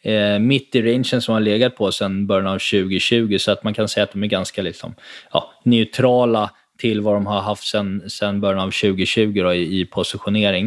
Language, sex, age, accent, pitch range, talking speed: Swedish, male, 20-39, native, 105-120 Hz, 210 wpm